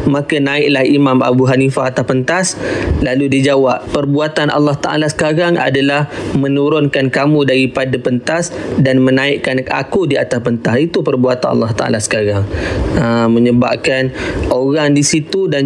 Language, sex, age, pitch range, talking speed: Malay, male, 20-39, 125-140 Hz, 135 wpm